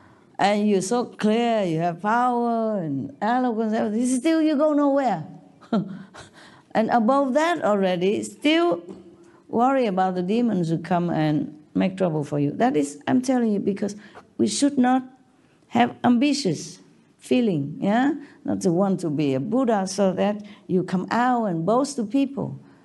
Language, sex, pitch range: Korean, female, 180-240 Hz